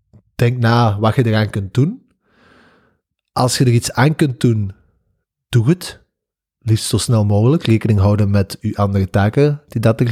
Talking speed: 170 wpm